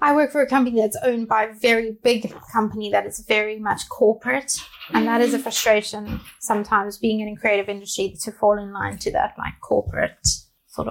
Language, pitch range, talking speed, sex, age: English, 205-230 Hz, 205 wpm, female, 20-39